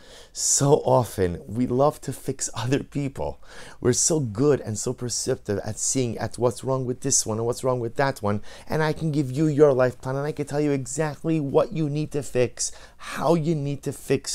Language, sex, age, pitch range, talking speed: English, male, 30-49, 110-150 Hz, 220 wpm